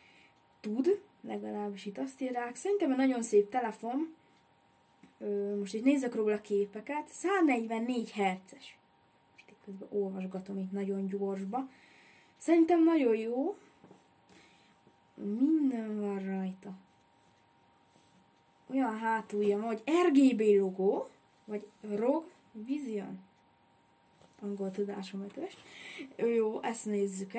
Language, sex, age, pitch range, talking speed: Hungarian, female, 20-39, 200-275 Hz, 100 wpm